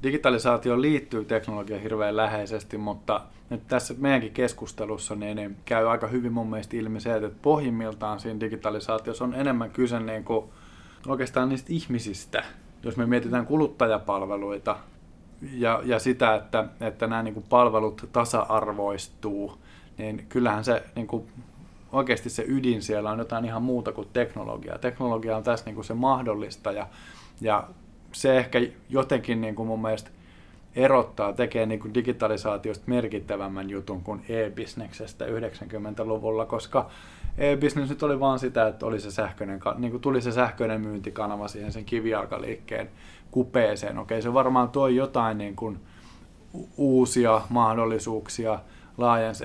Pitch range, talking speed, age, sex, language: 105-120 Hz, 130 wpm, 20-39, male, Finnish